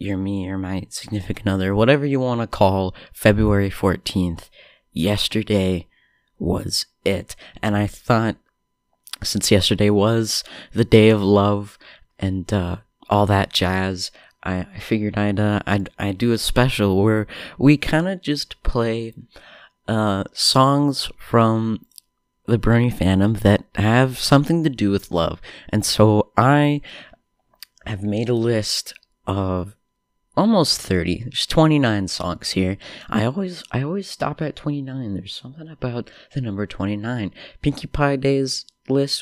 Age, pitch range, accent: 30-49, 100-125 Hz, American